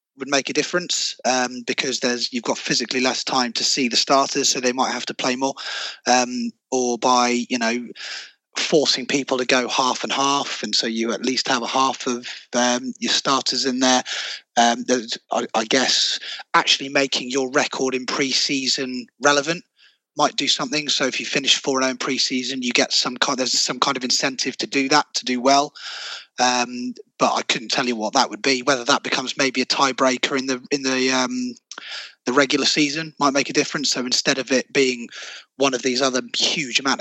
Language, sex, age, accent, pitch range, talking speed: English, male, 20-39, British, 125-140 Hz, 200 wpm